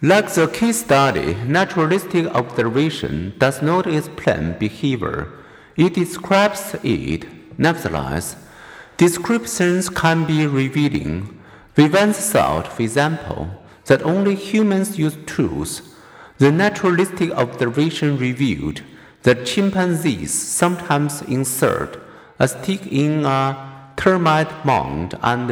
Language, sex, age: Chinese, male, 50-69